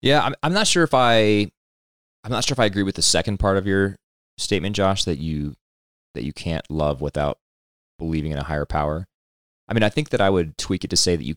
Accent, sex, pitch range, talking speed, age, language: American, male, 70-90 Hz, 245 wpm, 30-49, English